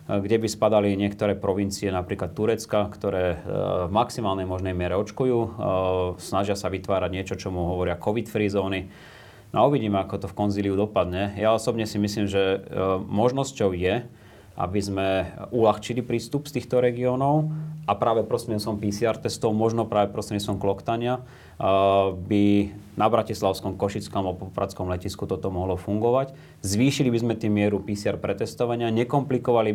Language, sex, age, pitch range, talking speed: Slovak, male, 30-49, 95-115 Hz, 145 wpm